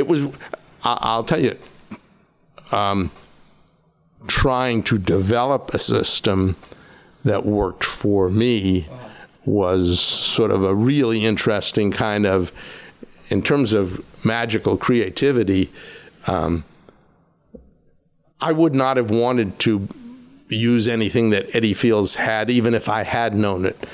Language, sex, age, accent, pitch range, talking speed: English, male, 60-79, American, 105-125 Hz, 120 wpm